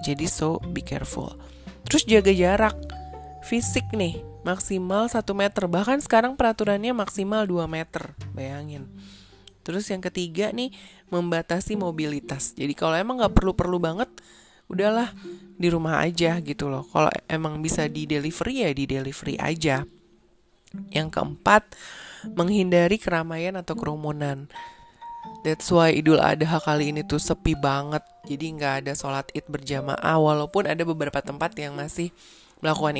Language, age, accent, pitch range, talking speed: Indonesian, 20-39, native, 150-195 Hz, 135 wpm